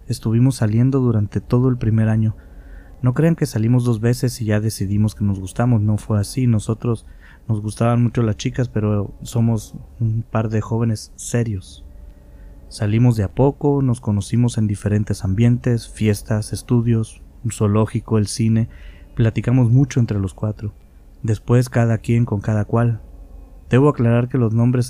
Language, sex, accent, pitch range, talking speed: Spanish, male, Mexican, 100-120 Hz, 155 wpm